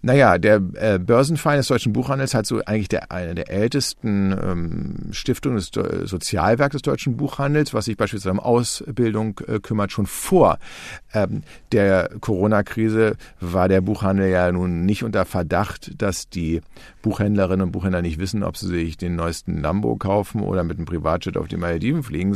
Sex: male